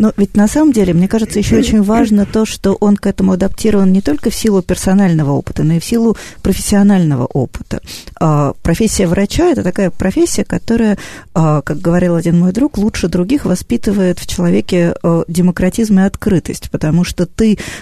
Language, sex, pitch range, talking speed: Russian, female, 165-205 Hz, 170 wpm